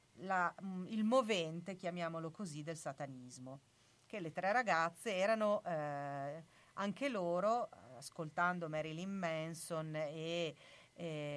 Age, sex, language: 40-59, female, Italian